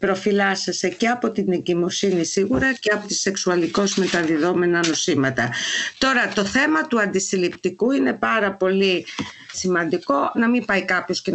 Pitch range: 175-220 Hz